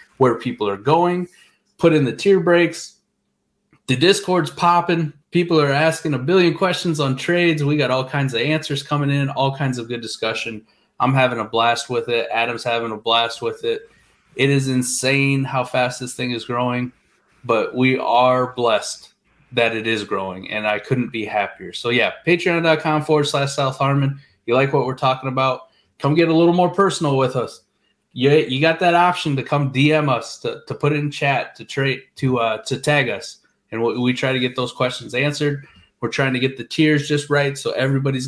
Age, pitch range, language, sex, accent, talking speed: 20-39, 125-160 Hz, English, male, American, 205 wpm